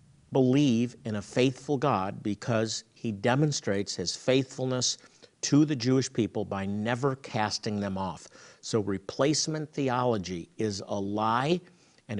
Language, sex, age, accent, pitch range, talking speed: English, male, 50-69, American, 110-145 Hz, 130 wpm